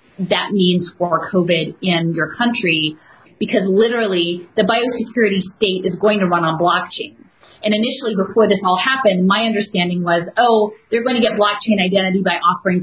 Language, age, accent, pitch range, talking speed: English, 30-49, American, 175-215 Hz, 170 wpm